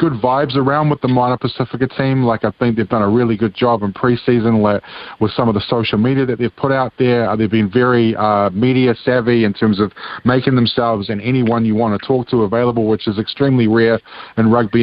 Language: English